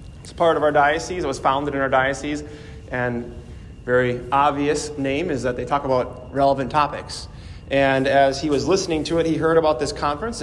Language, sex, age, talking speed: English, male, 30-49, 195 wpm